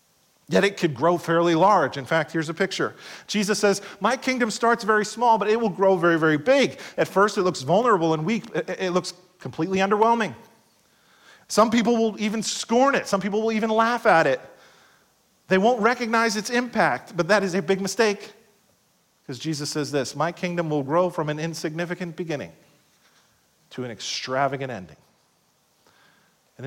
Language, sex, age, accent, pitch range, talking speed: English, male, 40-59, American, 150-210 Hz, 175 wpm